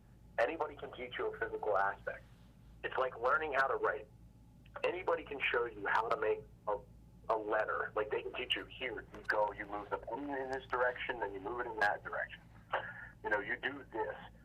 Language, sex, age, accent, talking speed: English, male, 40-59, American, 205 wpm